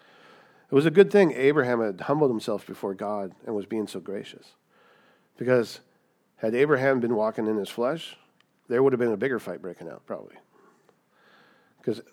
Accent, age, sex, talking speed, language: American, 50-69, male, 175 wpm, English